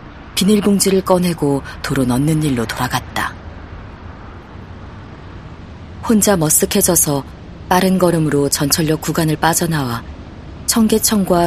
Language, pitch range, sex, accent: Korean, 115-165 Hz, female, native